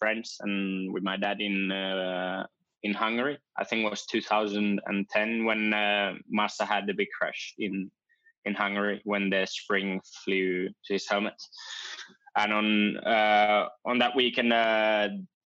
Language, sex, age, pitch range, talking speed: English, male, 20-39, 95-105 Hz, 145 wpm